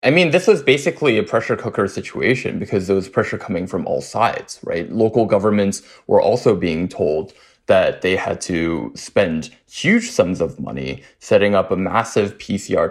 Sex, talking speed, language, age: male, 175 wpm, English, 20-39